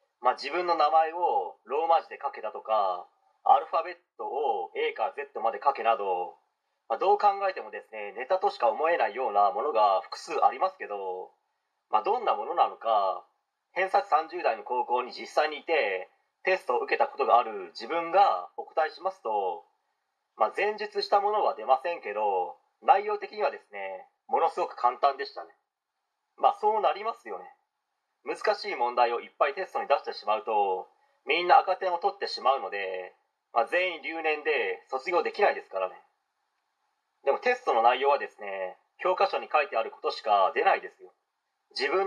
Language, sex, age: Japanese, male, 40-59